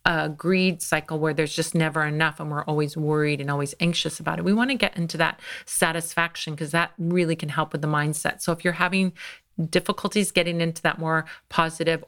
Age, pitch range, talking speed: 40-59, 155-180 Hz, 210 wpm